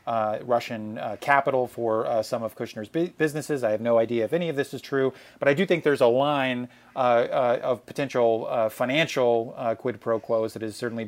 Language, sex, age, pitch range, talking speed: English, male, 30-49, 115-135 Hz, 215 wpm